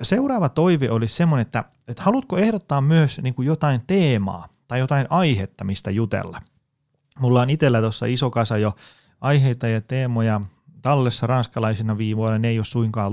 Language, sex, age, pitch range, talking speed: Finnish, male, 30-49, 105-140 Hz, 150 wpm